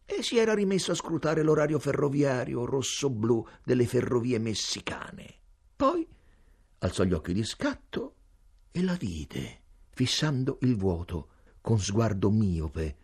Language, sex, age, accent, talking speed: Italian, male, 50-69, native, 125 wpm